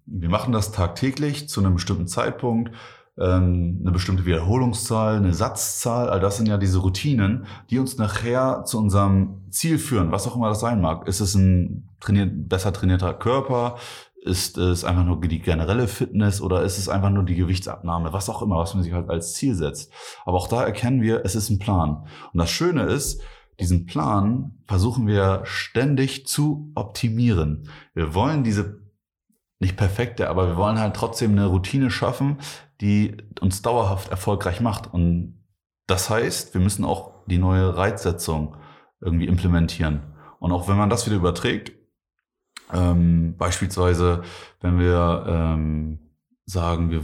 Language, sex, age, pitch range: German, male, 30-49, 90-110 Hz